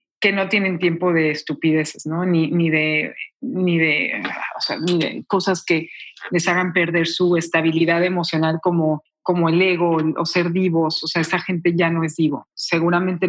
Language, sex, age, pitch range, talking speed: English, female, 40-59, 170-215 Hz, 180 wpm